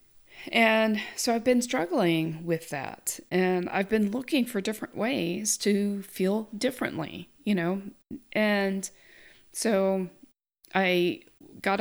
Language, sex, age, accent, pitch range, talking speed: English, female, 40-59, American, 170-210 Hz, 115 wpm